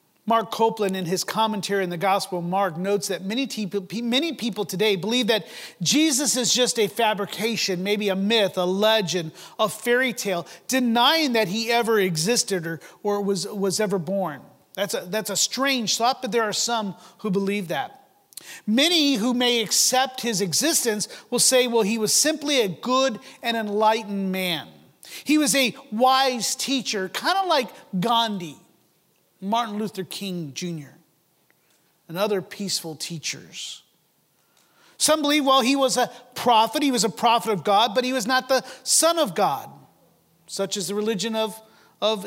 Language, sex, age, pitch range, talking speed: English, male, 40-59, 190-245 Hz, 165 wpm